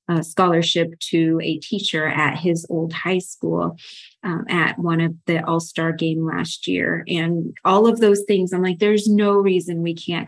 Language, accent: English, American